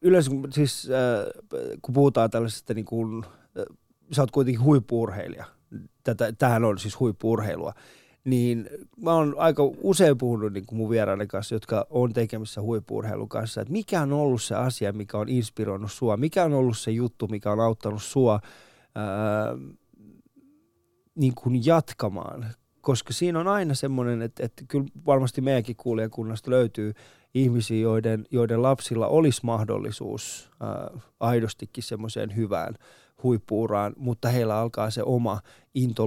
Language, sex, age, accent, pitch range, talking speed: Finnish, male, 20-39, native, 110-135 Hz, 135 wpm